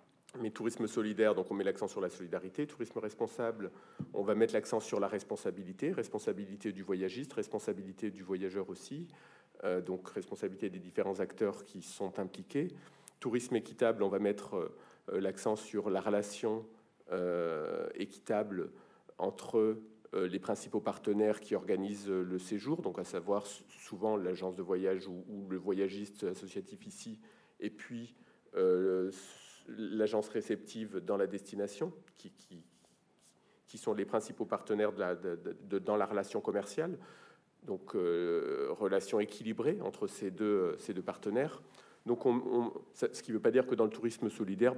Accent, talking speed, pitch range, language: French, 160 wpm, 100-135 Hz, French